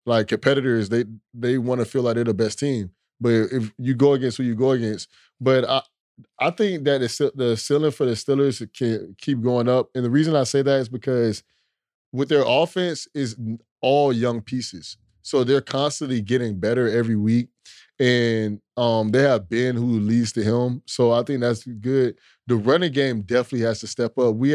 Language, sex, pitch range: English, male, 115-130 Hz